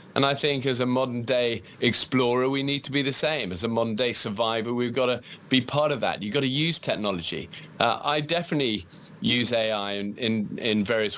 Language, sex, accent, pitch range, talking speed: English, male, British, 110-140 Hz, 205 wpm